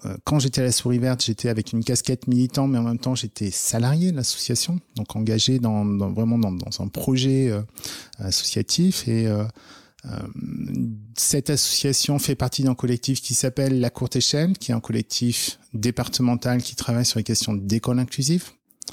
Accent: French